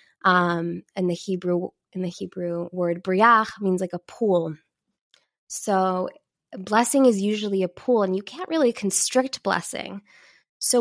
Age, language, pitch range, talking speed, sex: 20-39, English, 190-250 Hz, 135 wpm, female